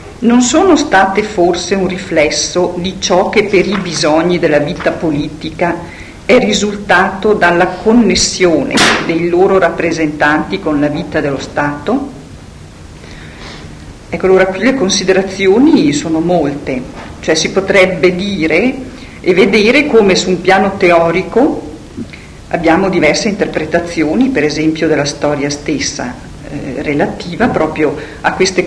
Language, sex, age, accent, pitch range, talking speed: Italian, female, 50-69, native, 155-190 Hz, 120 wpm